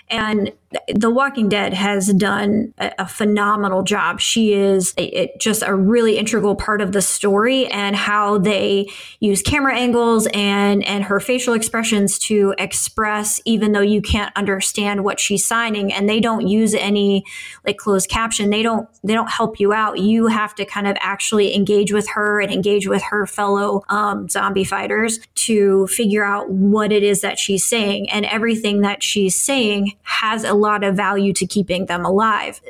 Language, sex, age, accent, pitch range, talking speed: English, female, 20-39, American, 200-215 Hz, 180 wpm